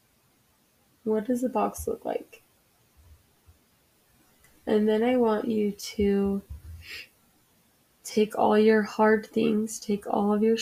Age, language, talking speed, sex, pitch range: 20-39, English, 120 wpm, female, 195-220 Hz